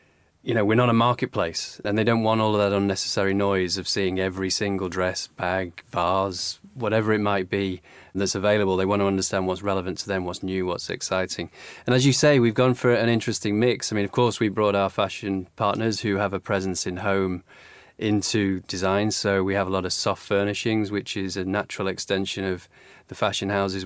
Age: 30-49